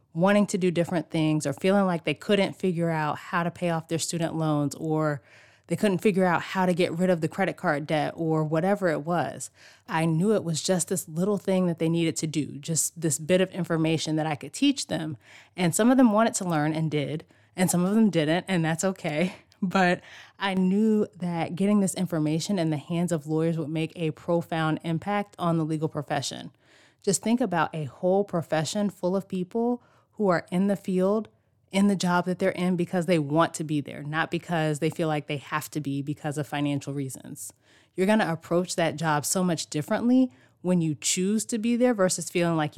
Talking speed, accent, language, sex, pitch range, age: 215 wpm, American, English, female, 155-185 Hz, 20-39